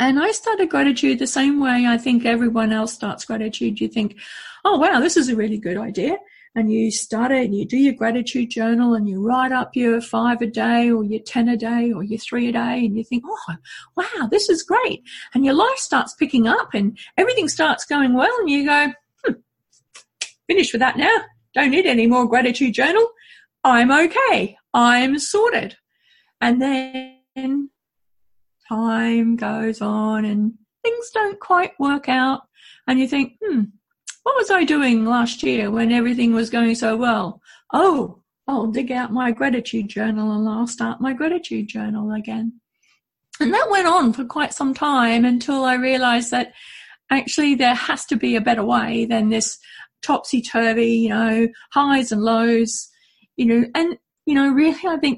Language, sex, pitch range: English, female, 230-285 Hz